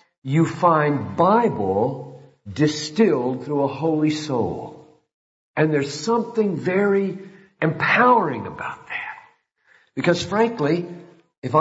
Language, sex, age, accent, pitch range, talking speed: English, male, 50-69, American, 140-190 Hz, 95 wpm